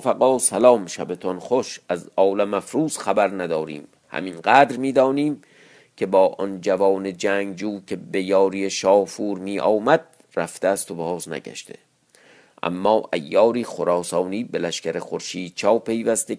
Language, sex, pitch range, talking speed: Persian, male, 95-130 Hz, 125 wpm